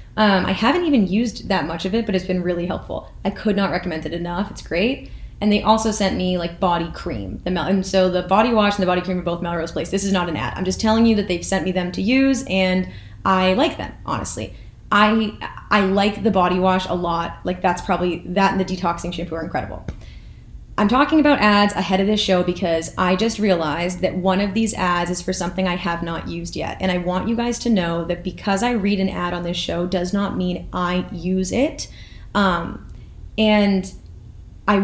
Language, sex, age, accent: English, female, 10-29, American